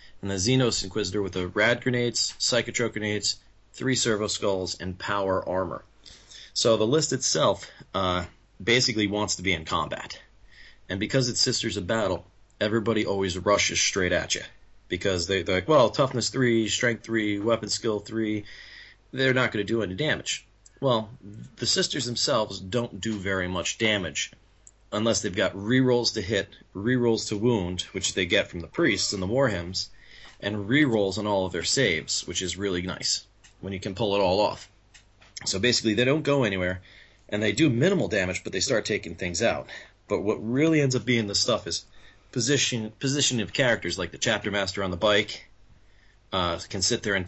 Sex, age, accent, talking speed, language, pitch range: male, 30-49, American, 185 wpm, English, 95-120 Hz